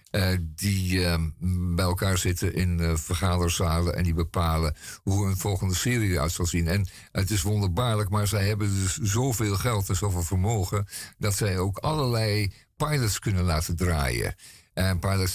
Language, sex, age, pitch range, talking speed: Dutch, male, 50-69, 90-110 Hz, 165 wpm